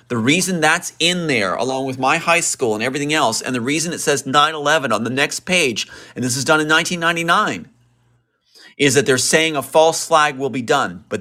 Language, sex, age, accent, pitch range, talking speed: English, male, 40-59, American, 110-140 Hz, 215 wpm